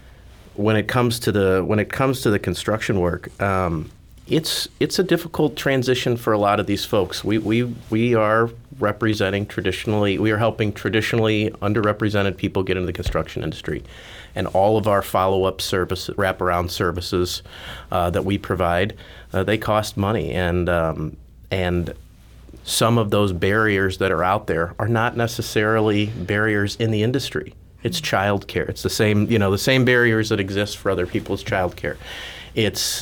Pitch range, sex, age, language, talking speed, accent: 90-110 Hz, male, 30-49, English, 175 wpm, American